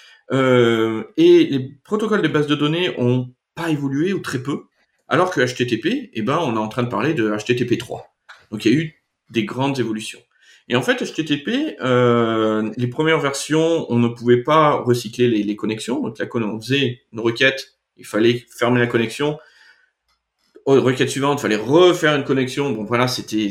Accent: French